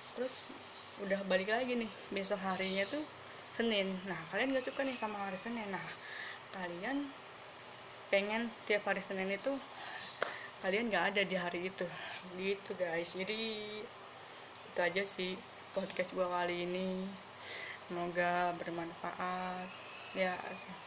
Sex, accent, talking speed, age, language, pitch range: female, native, 125 wpm, 20-39, Indonesian, 180-195 Hz